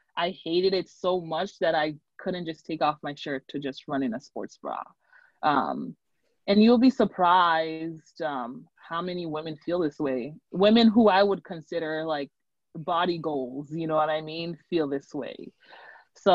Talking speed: 180 wpm